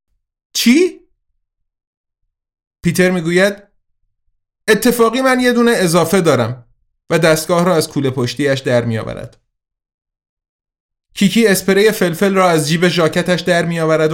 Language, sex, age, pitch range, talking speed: Persian, male, 30-49, 120-185 Hz, 110 wpm